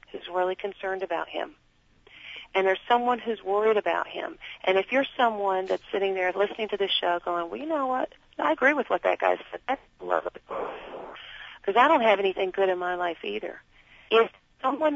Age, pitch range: 40-59, 190-250 Hz